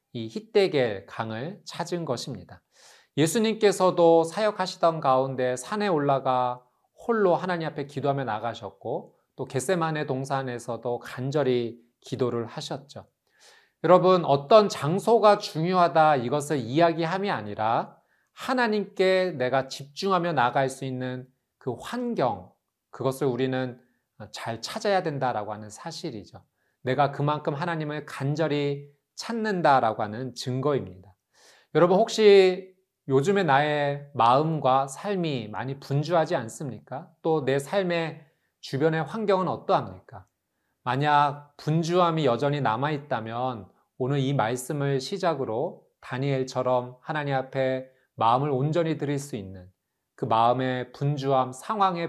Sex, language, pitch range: male, Korean, 125-165 Hz